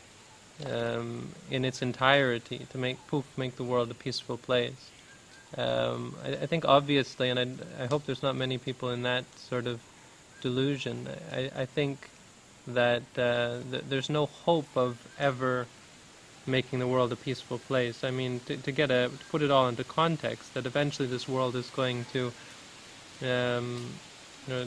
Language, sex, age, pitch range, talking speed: English, male, 20-39, 125-145 Hz, 165 wpm